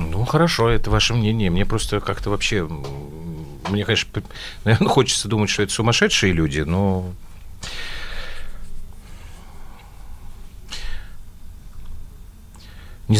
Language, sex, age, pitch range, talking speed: Russian, male, 40-59, 80-105 Hz, 90 wpm